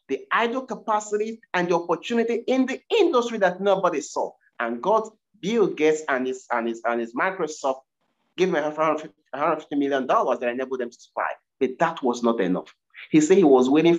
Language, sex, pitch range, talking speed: English, male, 140-235 Hz, 180 wpm